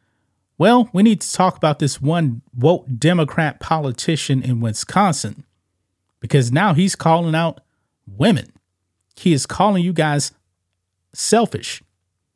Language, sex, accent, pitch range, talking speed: English, male, American, 120-165 Hz, 120 wpm